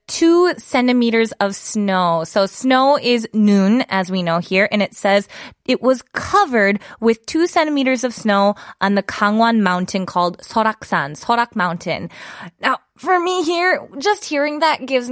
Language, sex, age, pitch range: Korean, female, 20-39, 210-290 Hz